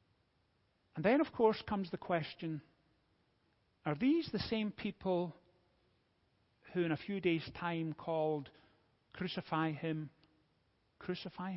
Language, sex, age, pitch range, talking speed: English, male, 40-59, 140-200 Hz, 115 wpm